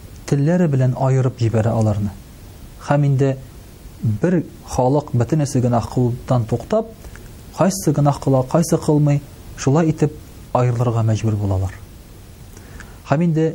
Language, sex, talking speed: Russian, male, 95 wpm